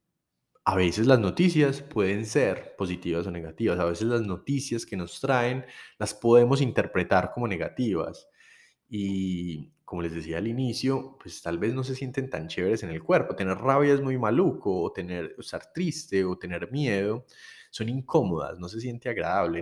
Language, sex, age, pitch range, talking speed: Spanish, male, 20-39, 95-130 Hz, 175 wpm